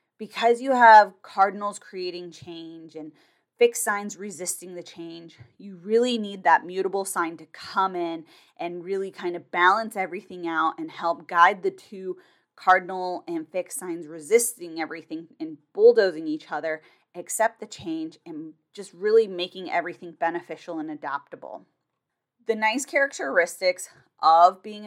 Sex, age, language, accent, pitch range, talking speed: female, 20-39, English, American, 170-215 Hz, 140 wpm